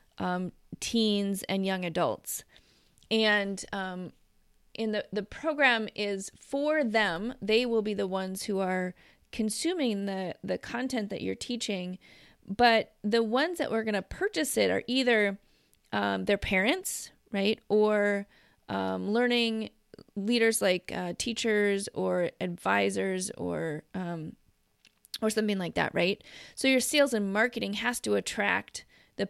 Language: English